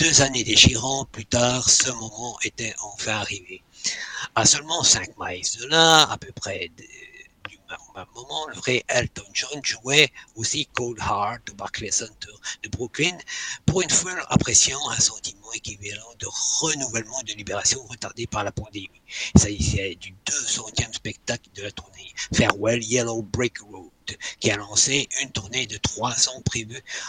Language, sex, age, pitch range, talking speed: French, male, 60-79, 105-130 Hz, 155 wpm